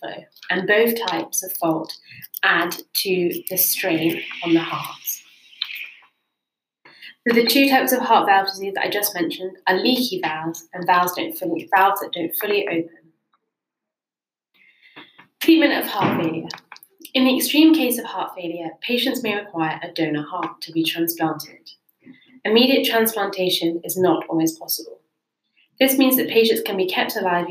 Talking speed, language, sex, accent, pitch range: 155 wpm, English, female, British, 175-225 Hz